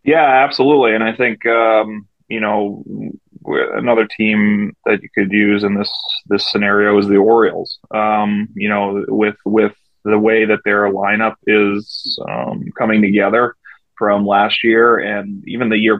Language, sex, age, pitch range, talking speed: English, male, 30-49, 105-110 Hz, 160 wpm